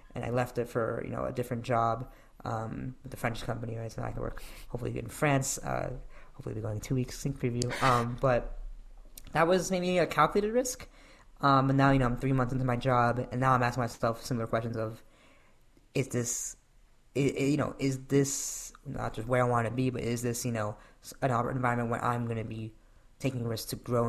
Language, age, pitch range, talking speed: English, 10-29, 115-130 Hz, 225 wpm